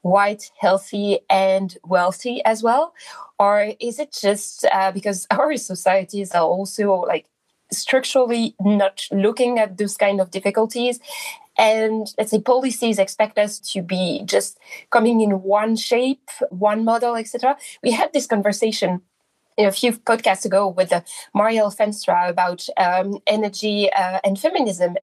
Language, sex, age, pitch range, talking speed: English, female, 20-39, 200-255 Hz, 140 wpm